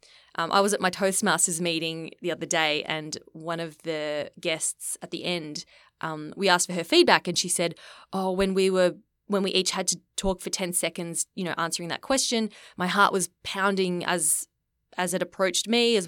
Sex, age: female, 20-39